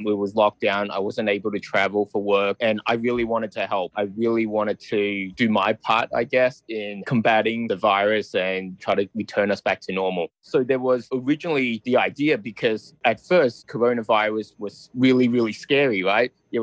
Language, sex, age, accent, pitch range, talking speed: English, male, 20-39, Australian, 105-125 Hz, 195 wpm